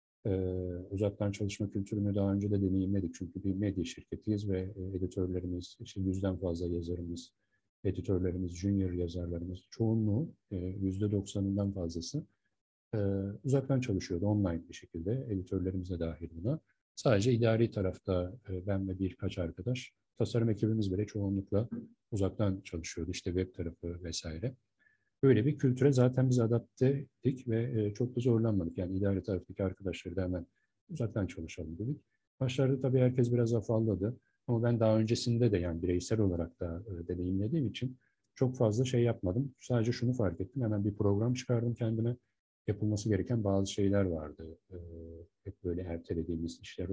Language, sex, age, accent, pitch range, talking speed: Turkish, male, 50-69, native, 90-115 Hz, 140 wpm